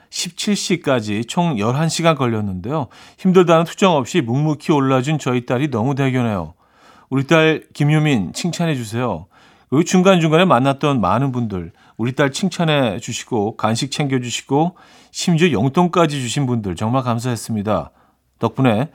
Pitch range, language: 115-160 Hz, Korean